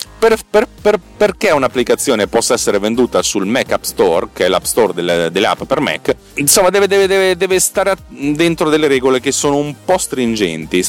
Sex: male